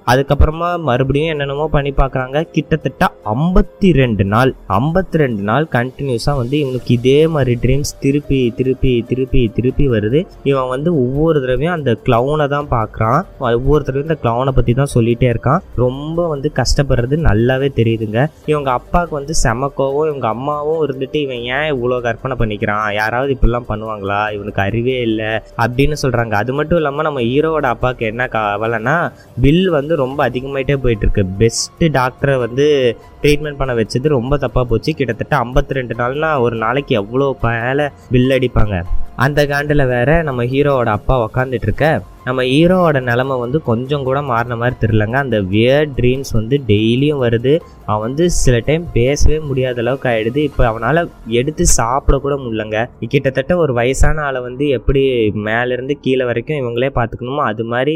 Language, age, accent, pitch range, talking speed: Tamil, 20-39, native, 115-145 Hz, 130 wpm